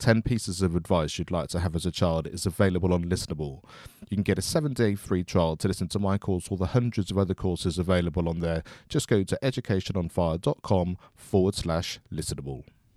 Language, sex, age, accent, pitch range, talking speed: English, male, 30-49, British, 90-105 Hz, 200 wpm